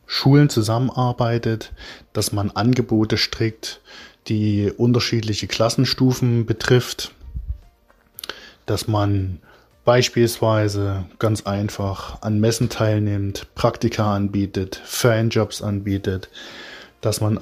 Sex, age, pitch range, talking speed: male, 20-39, 100-115 Hz, 85 wpm